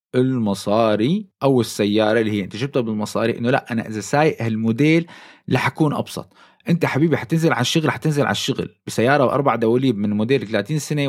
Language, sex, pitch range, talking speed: Arabic, male, 110-155 Hz, 160 wpm